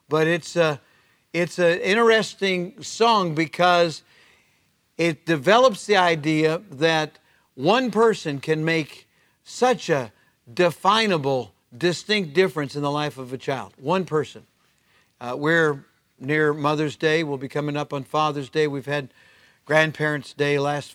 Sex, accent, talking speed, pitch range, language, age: male, American, 135 wpm, 140-170 Hz, English, 50-69